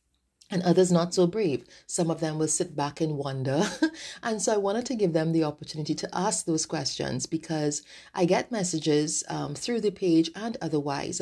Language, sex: English, female